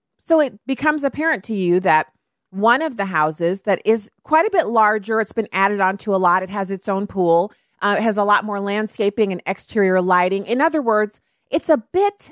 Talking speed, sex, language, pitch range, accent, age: 215 wpm, female, English, 175-220 Hz, American, 30-49